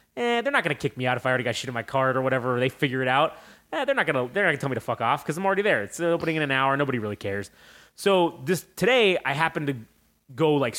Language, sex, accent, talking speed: English, male, American, 290 wpm